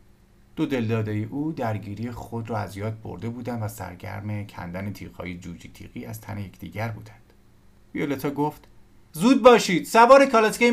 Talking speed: 150 wpm